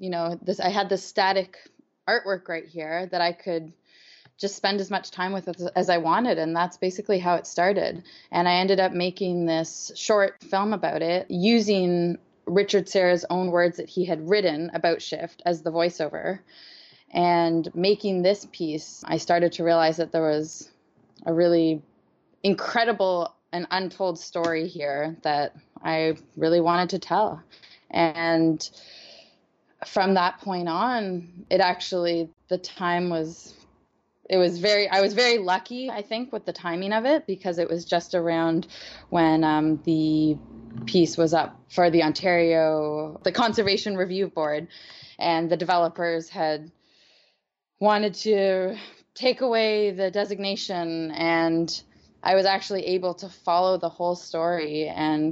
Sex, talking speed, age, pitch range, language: female, 150 wpm, 20-39, 165-190 Hz, English